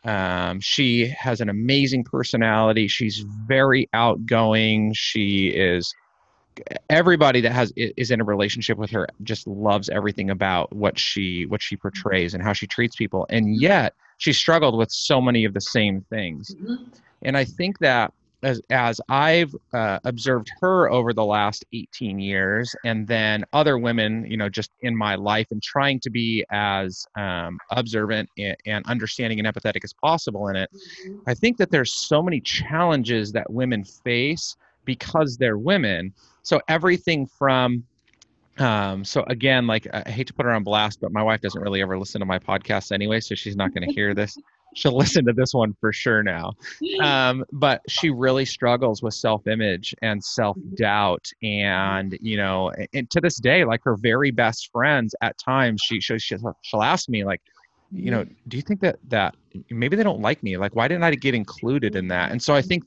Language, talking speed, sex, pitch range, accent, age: English, 180 wpm, male, 105-130 Hz, American, 30-49